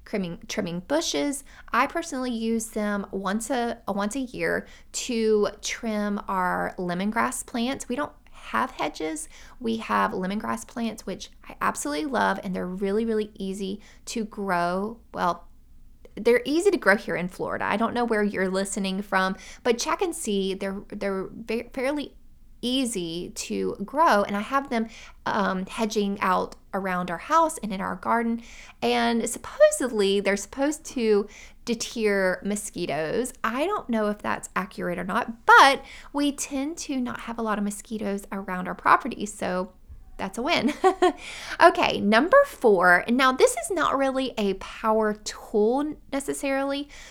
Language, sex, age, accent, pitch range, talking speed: English, female, 20-39, American, 195-255 Hz, 155 wpm